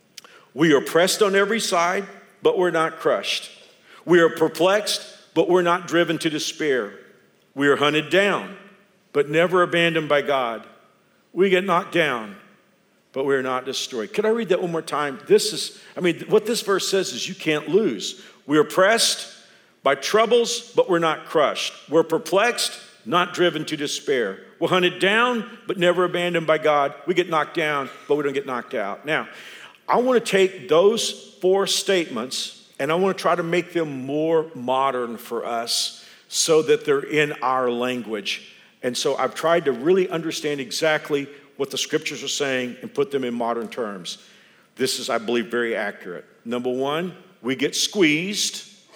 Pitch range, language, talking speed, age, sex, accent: 140-190 Hz, English, 175 wpm, 50-69, male, American